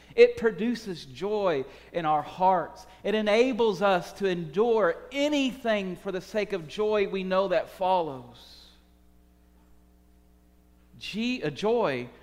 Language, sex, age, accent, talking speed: English, male, 40-59, American, 110 wpm